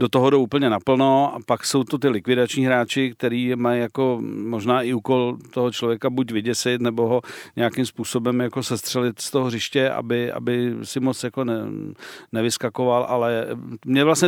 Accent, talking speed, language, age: native, 170 wpm, Czech, 50-69